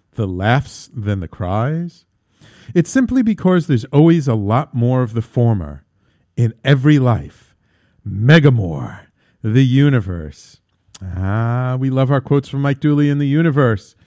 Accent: American